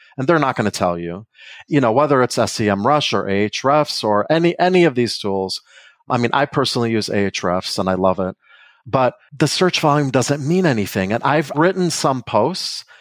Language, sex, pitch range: English, male, 105-145 Hz